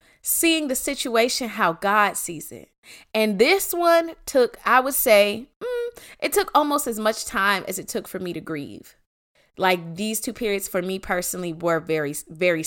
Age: 20-39